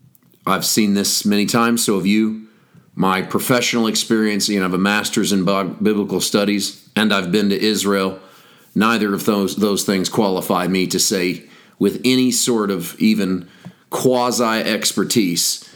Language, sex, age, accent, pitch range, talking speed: English, male, 40-59, American, 95-120 Hz, 150 wpm